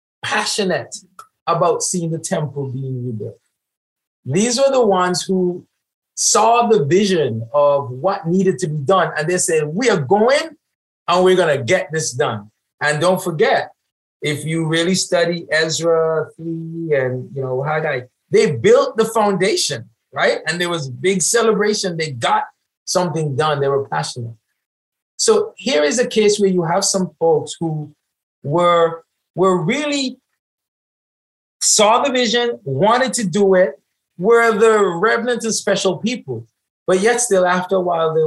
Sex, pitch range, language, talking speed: male, 140-190 Hz, English, 155 wpm